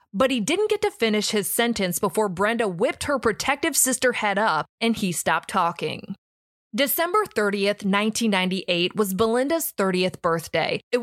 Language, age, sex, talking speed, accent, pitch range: English, 20-39, female, 150 wpm, American, 190-250 Hz